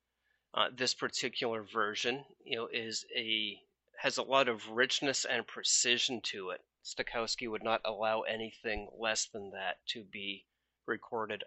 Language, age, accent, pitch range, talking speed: English, 30-49, American, 110-130 Hz, 145 wpm